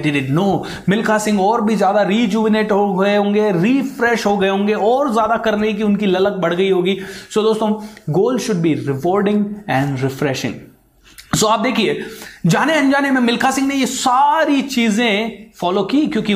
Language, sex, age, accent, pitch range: Hindi, male, 30-49, native, 140-215 Hz